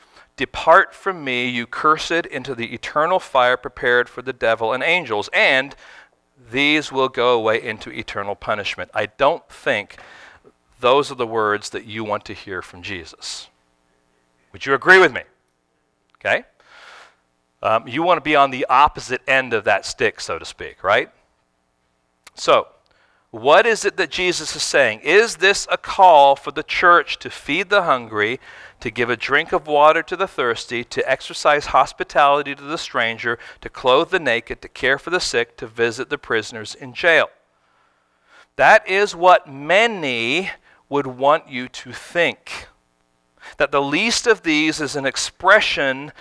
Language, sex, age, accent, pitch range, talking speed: English, male, 40-59, American, 110-160 Hz, 160 wpm